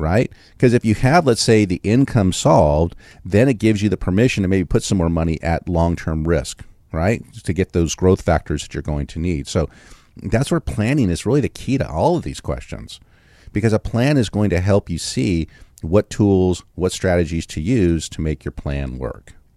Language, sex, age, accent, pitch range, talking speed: English, male, 40-59, American, 85-110 Hz, 210 wpm